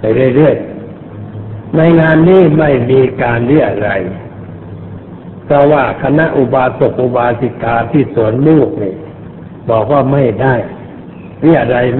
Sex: male